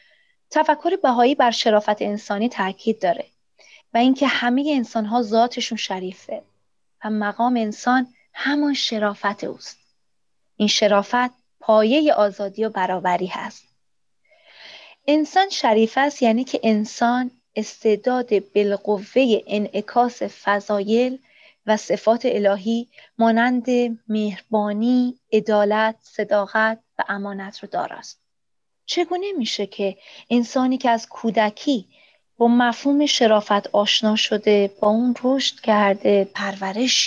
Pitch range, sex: 210-255 Hz, female